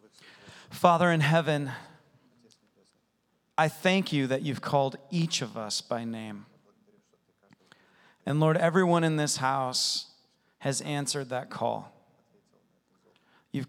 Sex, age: male, 40-59